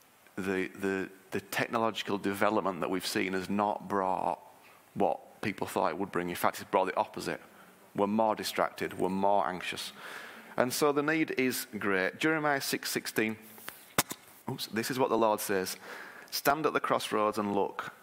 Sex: male